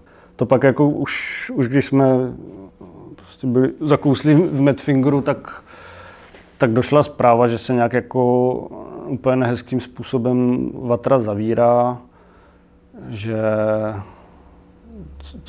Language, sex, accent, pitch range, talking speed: Czech, male, native, 110-125 Hz, 100 wpm